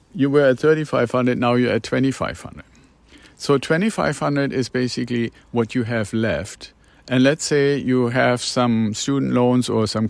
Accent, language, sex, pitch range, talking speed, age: German, English, male, 110-125 Hz, 195 wpm, 50-69